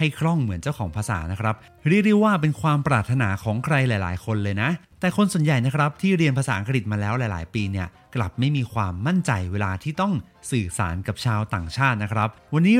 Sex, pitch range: male, 105-160 Hz